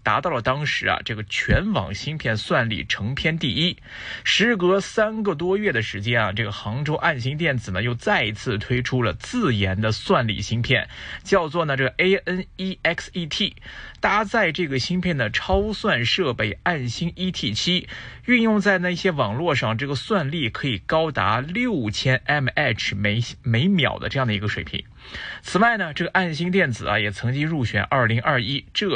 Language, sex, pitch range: Chinese, male, 110-180 Hz